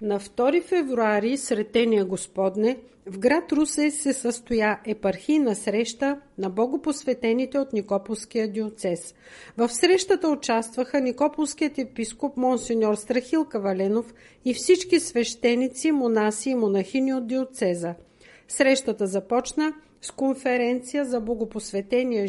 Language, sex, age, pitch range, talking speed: Bulgarian, female, 50-69, 220-280 Hz, 105 wpm